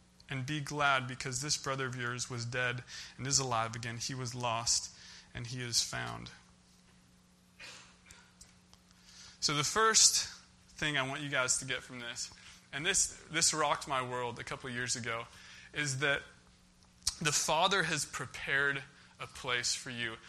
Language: English